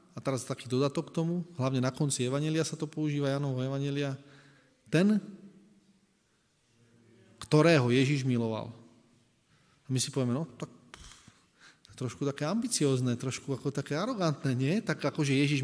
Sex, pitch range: male, 125-170 Hz